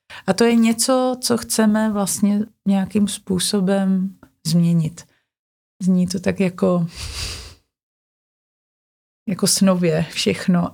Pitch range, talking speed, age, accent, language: 185-205 Hz, 95 wpm, 30-49, native, Czech